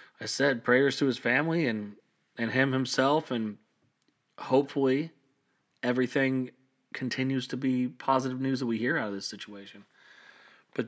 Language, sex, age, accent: English, male, 30-49, American